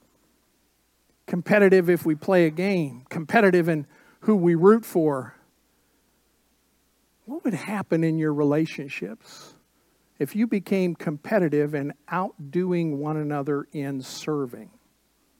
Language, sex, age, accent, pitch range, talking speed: English, male, 50-69, American, 155-210 Hz, 110 wpm